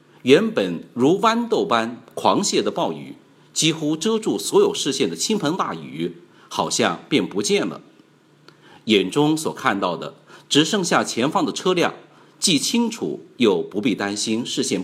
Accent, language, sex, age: native, Chinese, male, 50-69